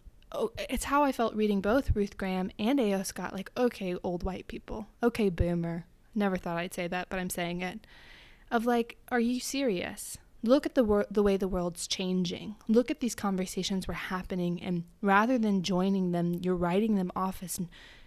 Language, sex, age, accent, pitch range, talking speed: English, female, 20-39, American, 185-245 Hz, 195 wpm